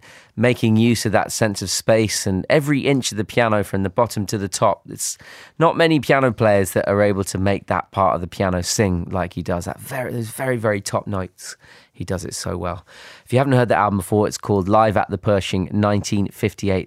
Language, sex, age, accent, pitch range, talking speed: French, male, 20-39, British, 95-125 Hz, 225 wpm